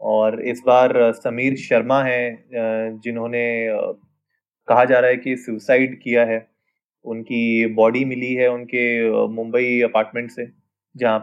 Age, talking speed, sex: 20-39, 130 wpm, male